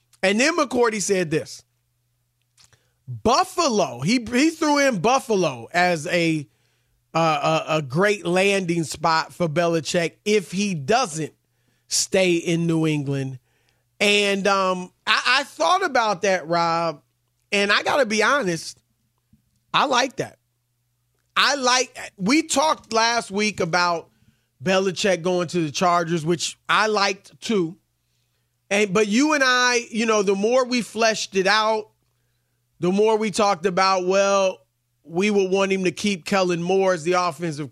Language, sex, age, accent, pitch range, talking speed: English, male, 30-49, American, 160-205 Hz, 145 wpm